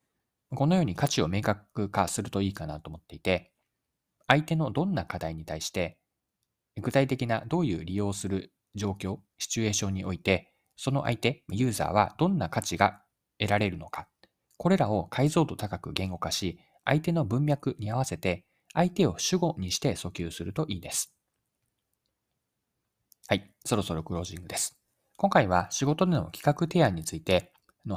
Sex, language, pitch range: male, Japanese, 90-140 Hz